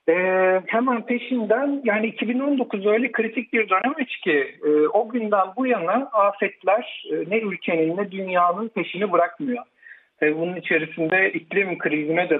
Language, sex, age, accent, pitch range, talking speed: Turkish, male, 60-79, native, 160-250 Hz, 140 wpm